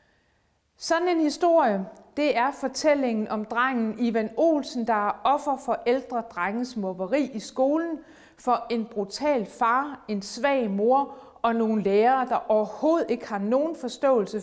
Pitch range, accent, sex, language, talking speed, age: 215-275 Hz, native, female, Danish, 145 wpm, 30-49